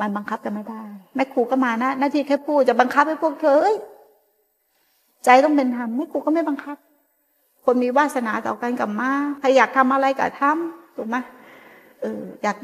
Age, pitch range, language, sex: 60-79, 220-280 Hz, Thai, female